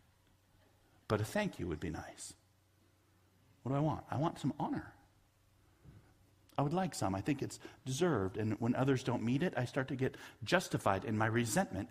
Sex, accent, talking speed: male, American, 185 wpm